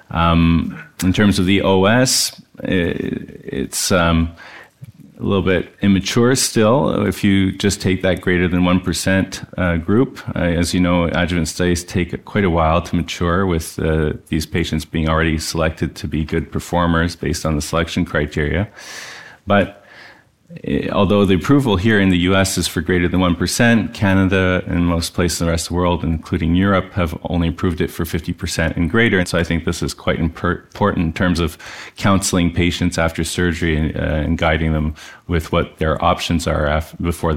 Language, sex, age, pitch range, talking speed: English, male, 30-49, 85-100 Hz, 175 wpm